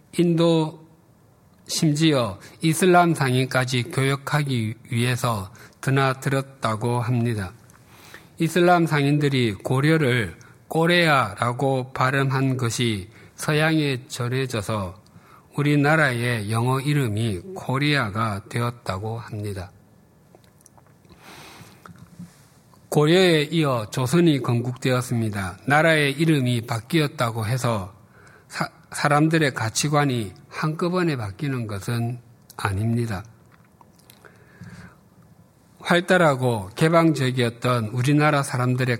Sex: male